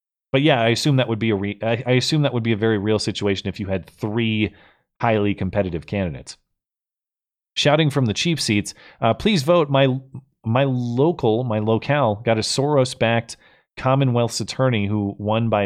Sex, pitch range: male, 105-135 Hz